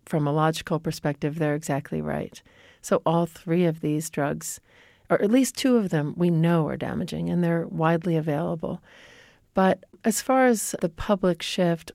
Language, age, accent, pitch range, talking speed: English, 40-59, American, 160-200 Hz, 170 wpm